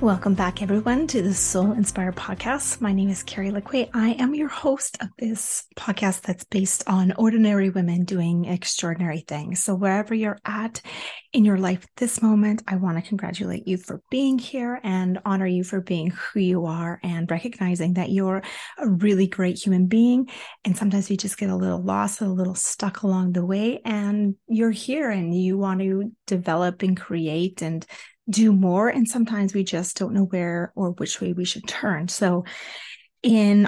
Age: 30-49